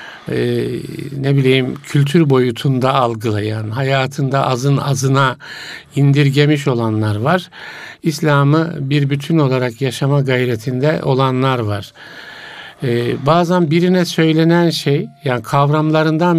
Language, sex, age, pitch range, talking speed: Turkish, male, 60-79, 125-150 Hz, 100 wpm